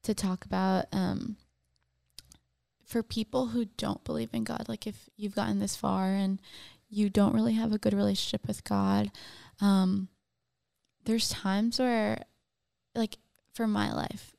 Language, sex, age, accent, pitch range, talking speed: English, female, 20-39, American, 180-215 Hz, 145 wpm